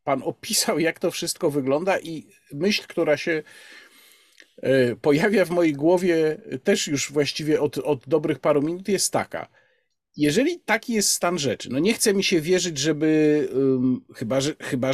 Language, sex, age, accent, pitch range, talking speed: Polish, male, 50-69, native, 150-195 Hz, 150 wpm